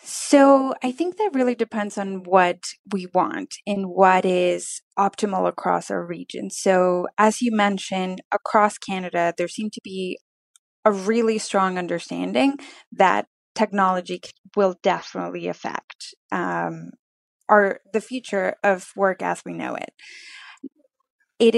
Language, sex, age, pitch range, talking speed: English, female, 20-39, 185-230 Hz, 130 wpm